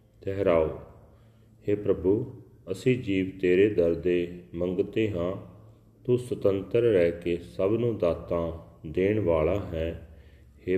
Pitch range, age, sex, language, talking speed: 90-110 Hz, 40-59, male, Punjabi, 105 wpm